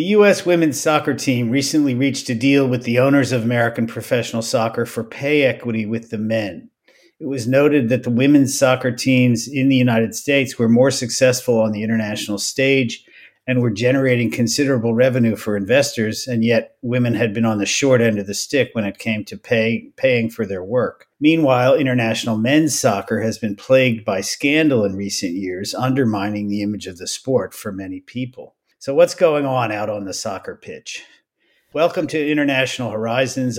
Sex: male